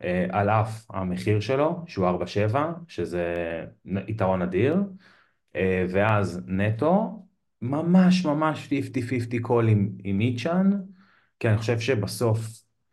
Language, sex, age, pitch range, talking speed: Hebrew, male, 30-49, 95-125 Hz, 95 wpm